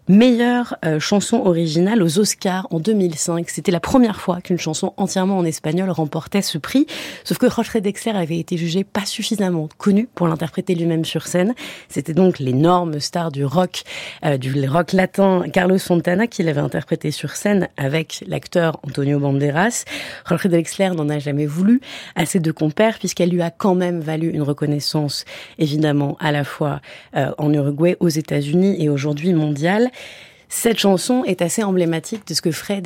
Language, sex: French, female